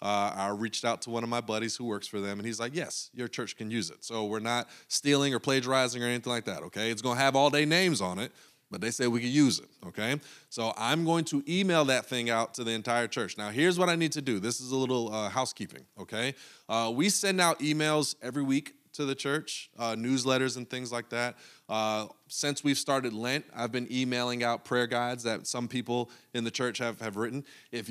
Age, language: 30-49, English